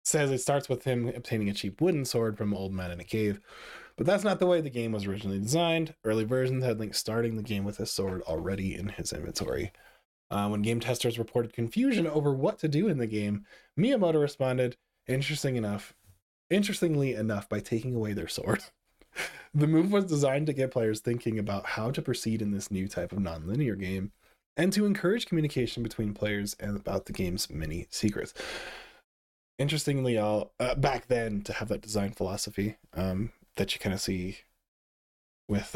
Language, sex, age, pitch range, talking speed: English, male, 20-39, 100-135 Hz, 190 wpm